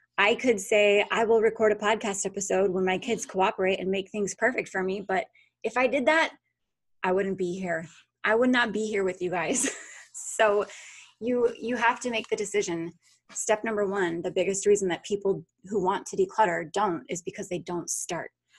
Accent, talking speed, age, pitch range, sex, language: American, 200 wpm, 20-39, 180-220 Hz, female, English